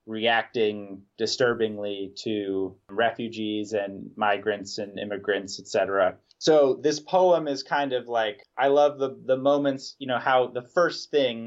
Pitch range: 110-135 Hz